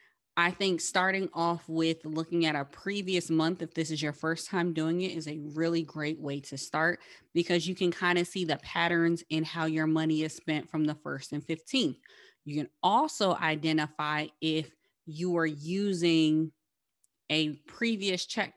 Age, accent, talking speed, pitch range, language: 20-39, American, 180 wpm, 160-195 Hz, English